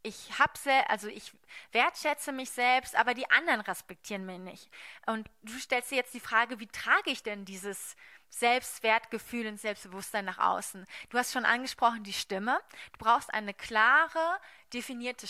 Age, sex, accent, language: 20-39, female, German, German